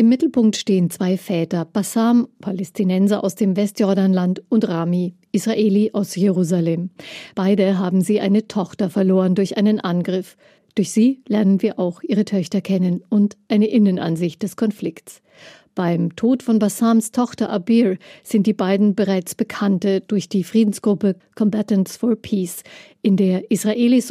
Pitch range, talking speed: 190-215 Hz, 140 wpm